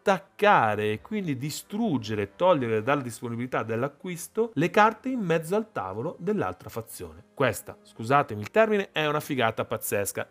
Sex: male